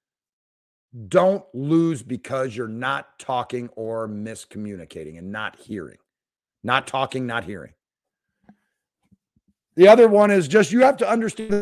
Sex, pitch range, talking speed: male, 145-215 Hz, 130 wpm